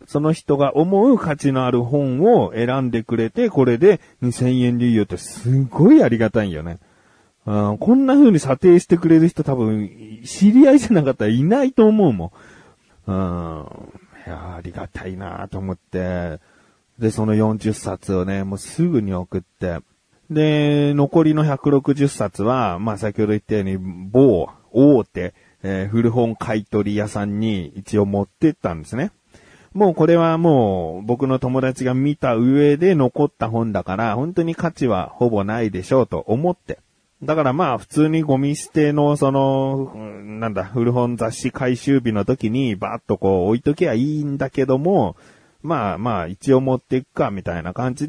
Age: 40-59